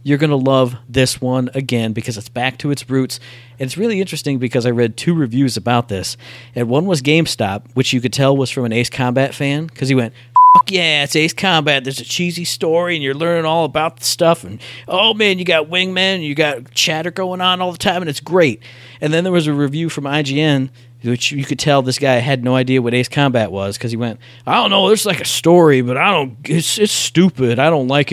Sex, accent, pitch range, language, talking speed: male, American, 120-160 Hz, English, 245 wpm